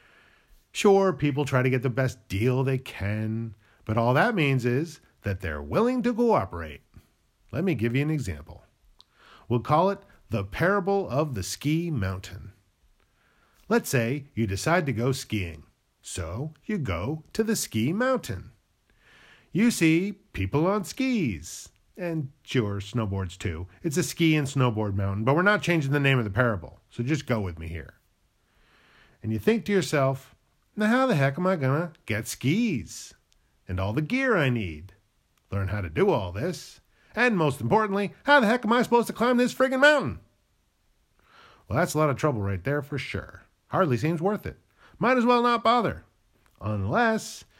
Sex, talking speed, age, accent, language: male, 175 wpm, 40-59, American, English